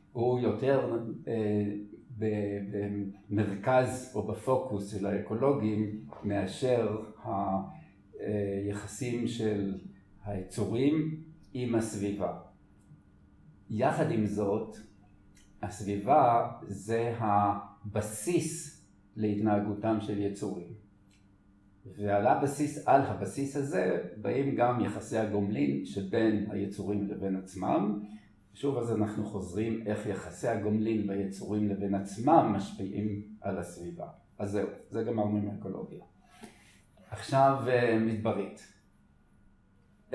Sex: male